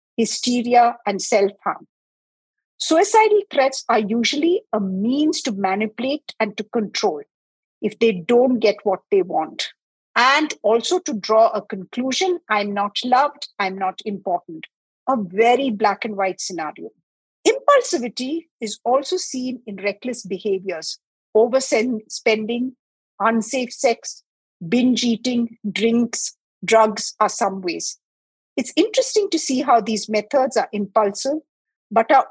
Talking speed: 125 wpm